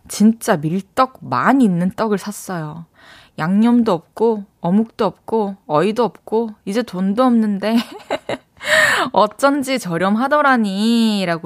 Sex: female